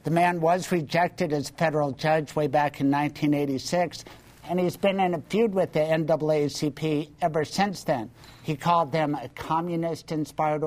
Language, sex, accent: English, male, American